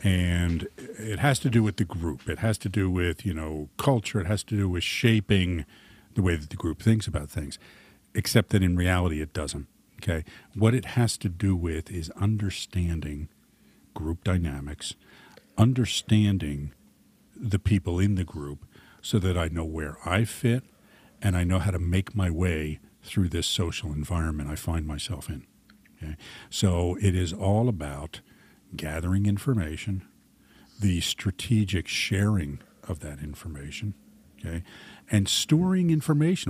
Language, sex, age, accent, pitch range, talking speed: English, male, 50-69, American, 85-105 Hz, 155 wpm